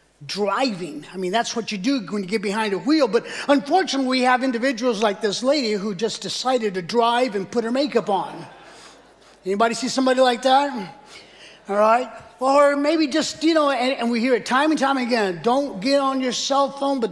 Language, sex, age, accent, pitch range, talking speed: English, male, 30-49, American, 225-295 Hz, 205 wpm